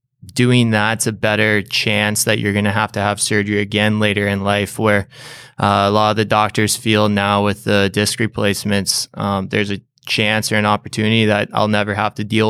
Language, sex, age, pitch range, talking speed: English, male, 20-39, 100-110 Hz, 205 wpm